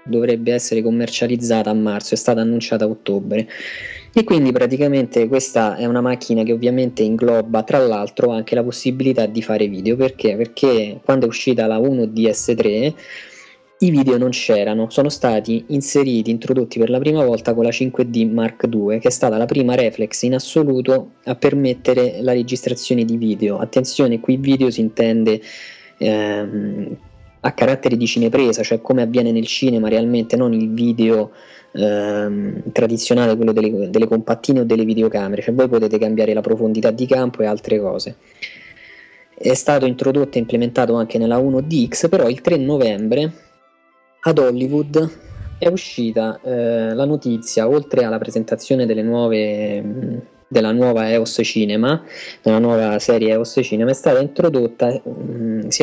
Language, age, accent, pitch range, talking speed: Italian, 20-39, native, 110-130 Hz, 155 wpm